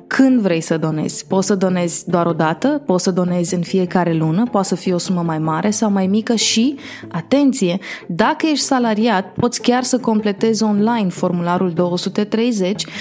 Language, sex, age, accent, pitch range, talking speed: Romanian, female, 20-39, native, 185-230 Hz, 175 wpm